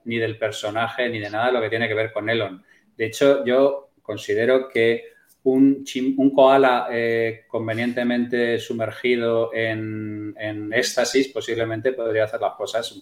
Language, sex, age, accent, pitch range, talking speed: Spanish, male, 30-49, Spanish, 115-140 Hz, 155 wpm